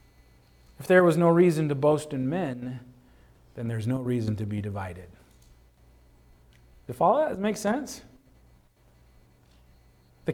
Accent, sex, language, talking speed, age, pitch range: American, male, English, 140 wpm, 40-59, 95-135 Hz